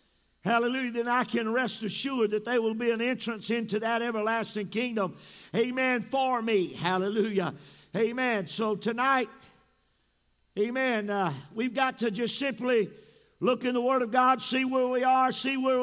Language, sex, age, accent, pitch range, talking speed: English, male, 50-69, American, 215-265 Hz, 160 wpm